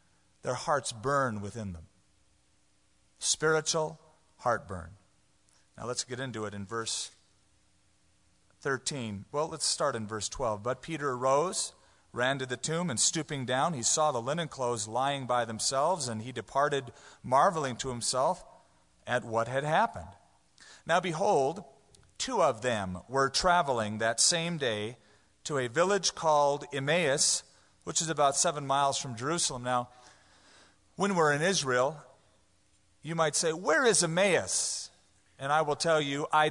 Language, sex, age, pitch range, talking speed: English, male, 40-59, 115-155 Hz, 145 wpm